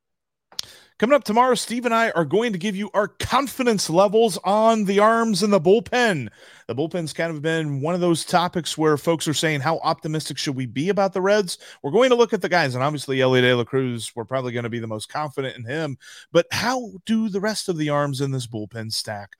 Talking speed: 230 wpm